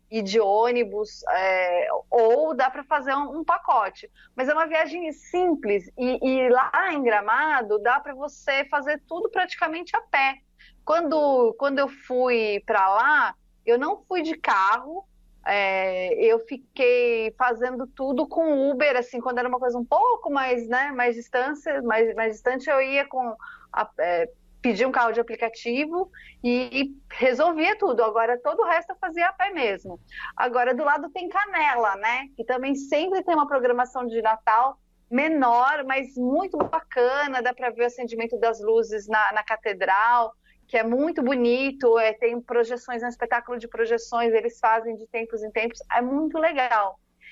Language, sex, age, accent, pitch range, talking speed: Portuguese, female, 30-49, Brazilian, 235-310 Hz, 165 wpm